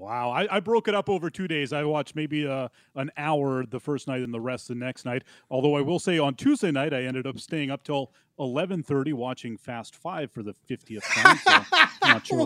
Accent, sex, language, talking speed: American, male, English, 235 wpm